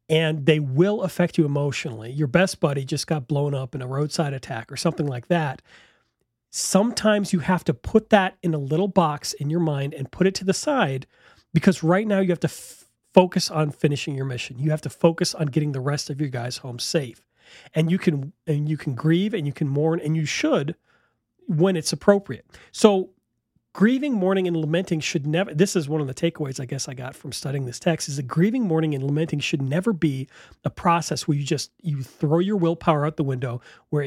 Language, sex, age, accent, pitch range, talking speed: English, male, 40-59, American, 140-175 Hz, 210 wpm